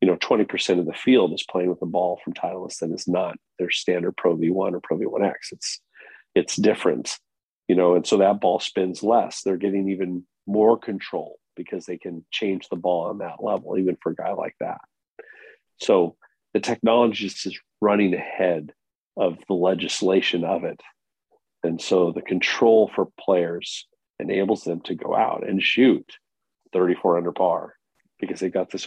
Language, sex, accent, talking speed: English, male, American, 180 wpm